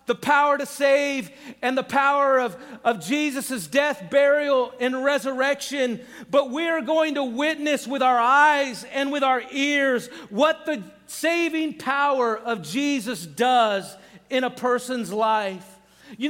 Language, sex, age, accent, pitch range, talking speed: English, male, 40-59, American, 260-310 Hz, 140 wpm